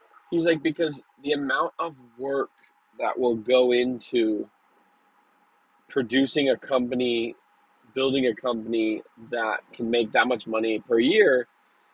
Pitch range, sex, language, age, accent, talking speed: 115-160 Hz, male, English, 20-39, American, 125 wpm